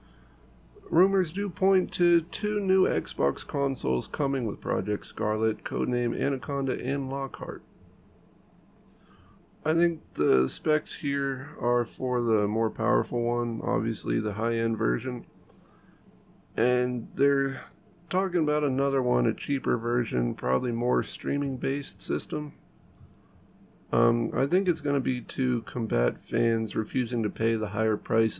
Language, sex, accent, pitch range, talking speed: English, male, American, 110-140 Hz, 125 wpm